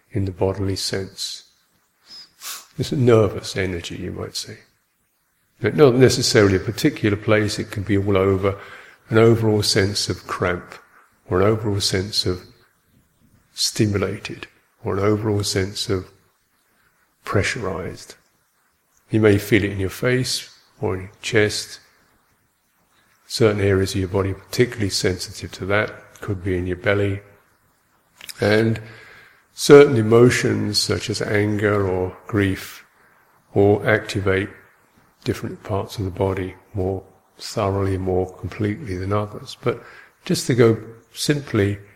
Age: 50-69